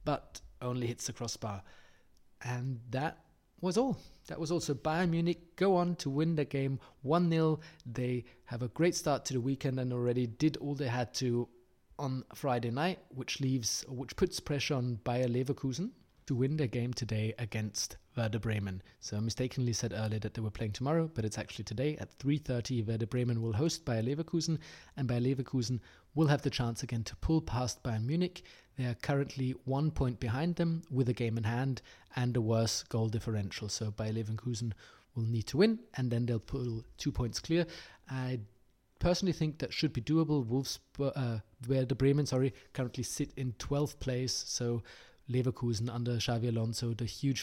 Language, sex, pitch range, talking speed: English, male, 115-135 Hz, 185 wpm